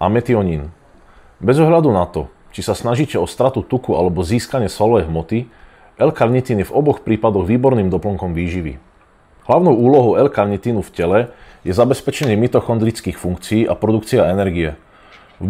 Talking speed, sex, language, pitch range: 145 wpm, male, Slovak, 90-125 Hz